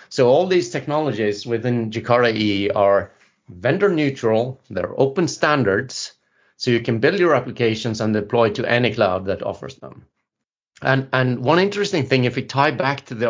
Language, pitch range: English, 110-140 Hz